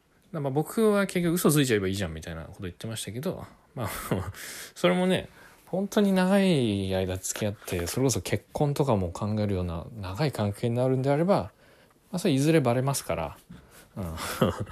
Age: 20-39